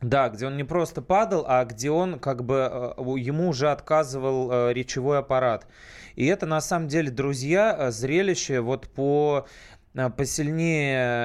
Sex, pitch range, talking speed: male, 125-155 Hz, 140 wpm